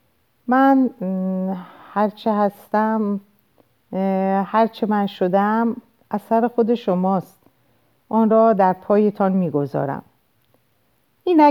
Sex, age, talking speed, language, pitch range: female, 50-69, 80 wpm, Persian, 155-210 Hz